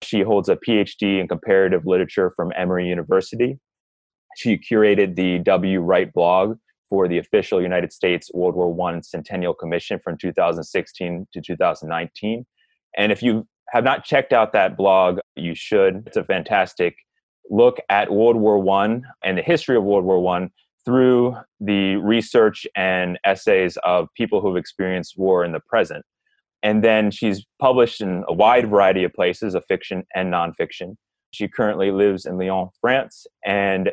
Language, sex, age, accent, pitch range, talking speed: English, male, 20-39, American, 90-110 Hz, 160 wpm